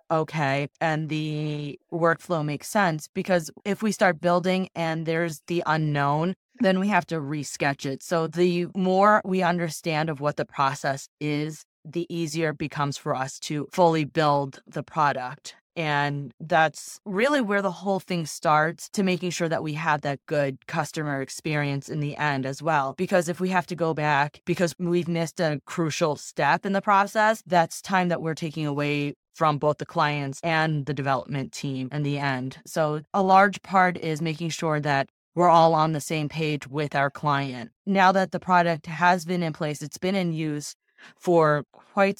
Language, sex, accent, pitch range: English, female, American, 145-175 Hz